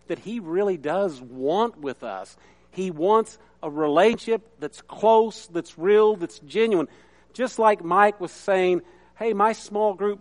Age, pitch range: 50-69, 175-255 Hz